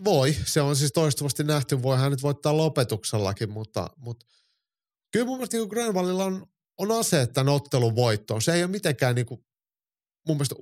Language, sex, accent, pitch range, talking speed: Finnish, male, native, 115-150 Hz, 170 wpm